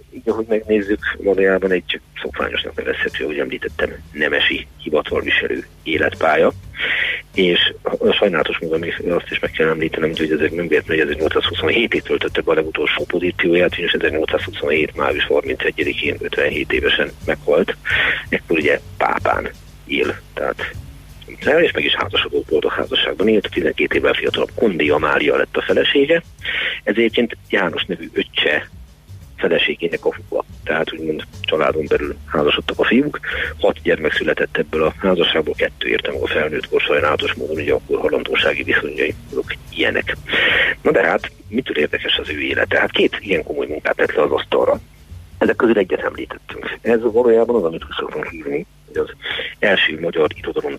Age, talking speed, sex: 40-59, 145 wpm, male